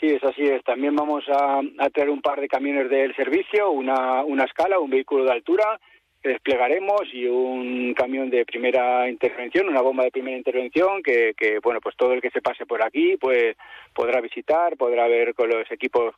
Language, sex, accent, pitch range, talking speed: Spanish, male, Spanish, 125-175 Hz, 200 wpm